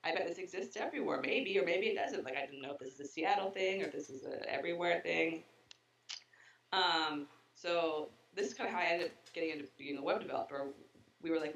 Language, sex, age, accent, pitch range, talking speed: English, female, 20-39, American, 140-170 Hz, 240 wpm